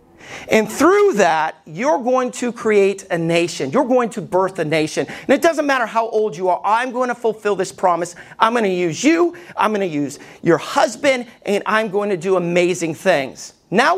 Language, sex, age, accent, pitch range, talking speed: English, male, 40-59, American, 180-240 Hz, 205 wpm